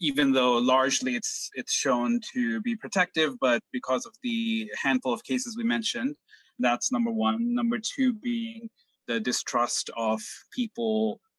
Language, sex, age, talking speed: English, male, 30-49, 150 wpm